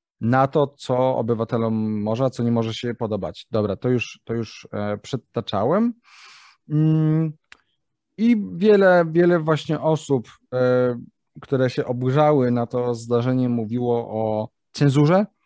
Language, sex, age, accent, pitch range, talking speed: Polish, male, 30-49, native, 115-140 Hz, 120 wpm